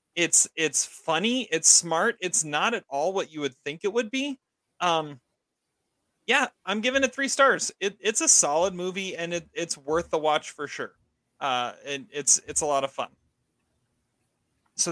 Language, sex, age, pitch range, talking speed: English, male, 30-49, 135-175 Hz, 180 wpm